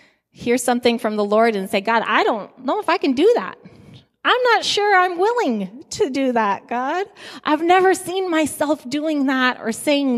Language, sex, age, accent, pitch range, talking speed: English, female, 20-39, American, 180-245 Hz, 195 wpm